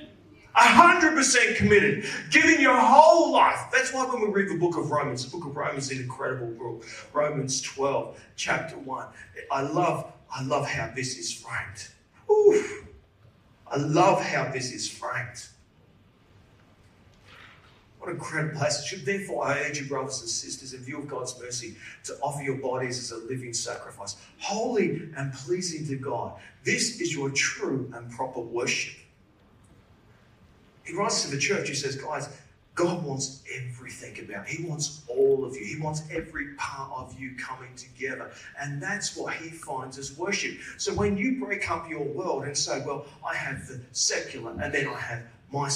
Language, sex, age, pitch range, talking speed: English, male, 40-59, 130-185 Hz, 170 wpm